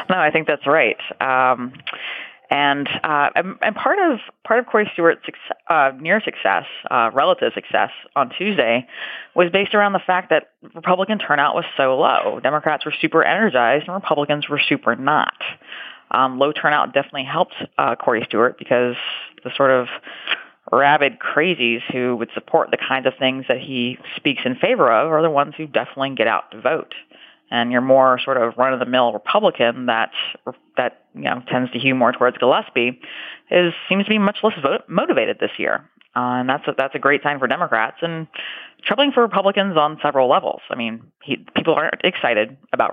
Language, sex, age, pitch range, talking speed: English, female, 30-49, 125-165 Hz, 190 wpm